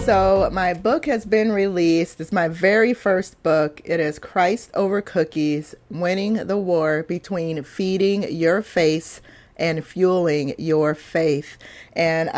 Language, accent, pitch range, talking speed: English, American, 150-180 Hz, 135 wpm